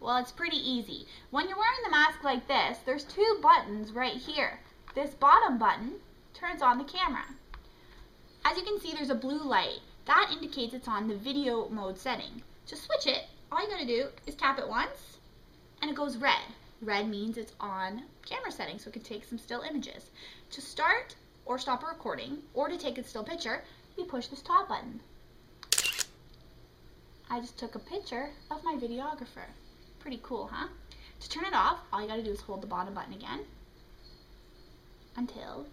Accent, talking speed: American, 190 wpm